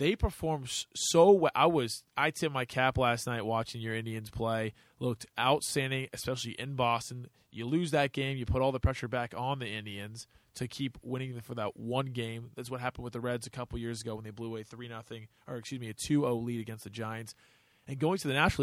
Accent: American